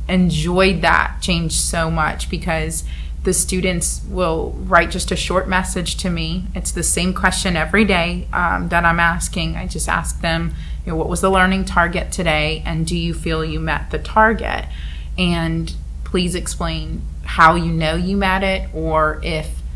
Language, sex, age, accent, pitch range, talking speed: English, female, 30-49, American, 155-185 Hz, 165 wpm